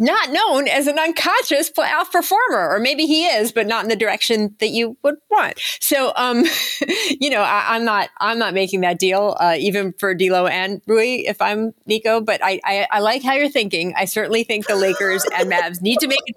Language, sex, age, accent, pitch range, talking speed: English, female, 30-49, American, 180-235 Hz, 220 wpm